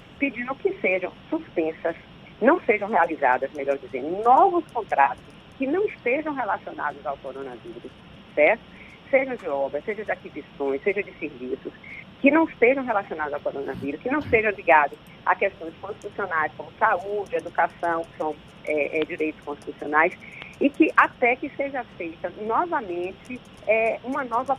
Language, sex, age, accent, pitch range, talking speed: Portuguese, female, 40-59, Brazilian, 175-290 Hz, 145 wpm